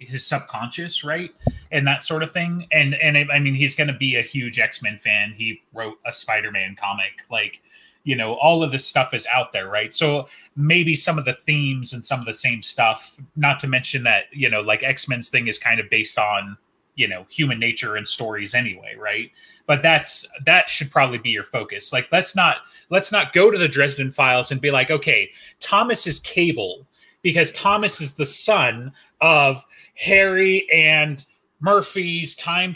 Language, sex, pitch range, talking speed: English, male, 130-170 Hz, 195 wpm